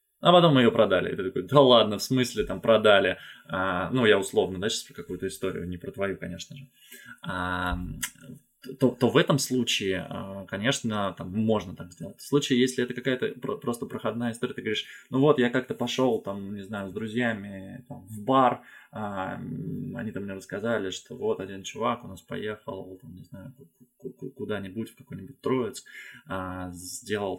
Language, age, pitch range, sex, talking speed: Russian, 20-39, 100-135 Hz, male, 190 wpm